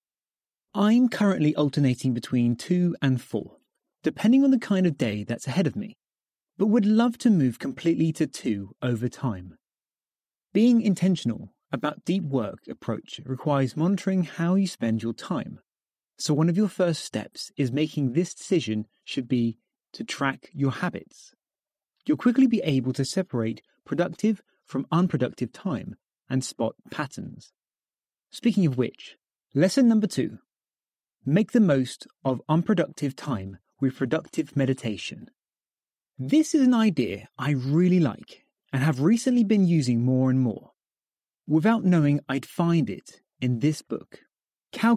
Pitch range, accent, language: 130-195 Hz, British, English